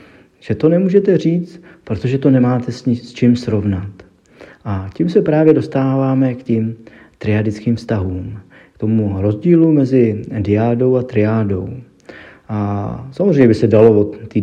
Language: Czech